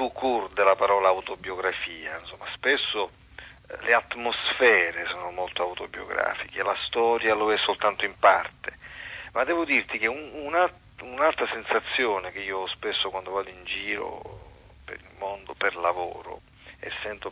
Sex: male